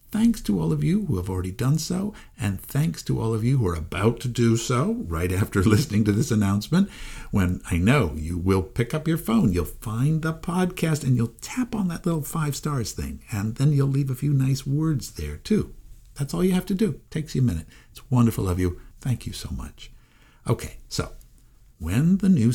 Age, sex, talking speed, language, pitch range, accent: 60-79, male, 220 wpm, English, 110-160 Hz, American